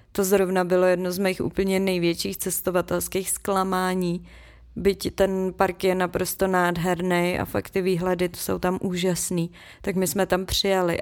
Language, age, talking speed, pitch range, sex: Czech, 20-39, 155 wpm, 180-195 Hz, female